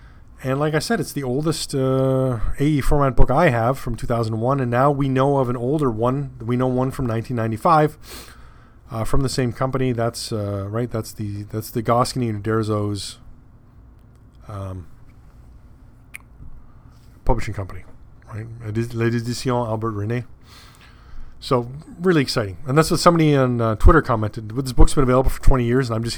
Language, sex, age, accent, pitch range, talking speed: English, male, 30-49, American, 110-135 Hz, 160 wpm